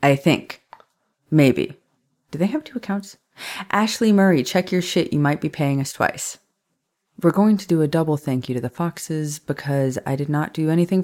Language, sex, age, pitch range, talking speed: English, female, 30-49, 140-180 Hz, 195 wpm